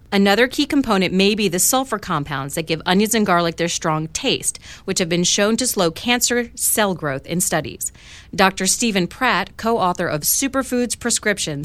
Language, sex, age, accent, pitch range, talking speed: English, female, 40-59, American, 160-220 Hz, 175 wpm